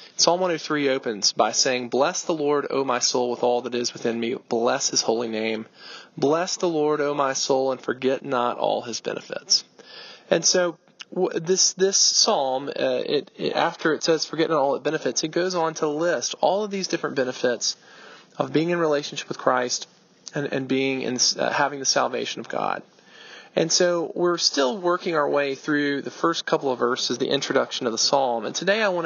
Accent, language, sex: American, English, male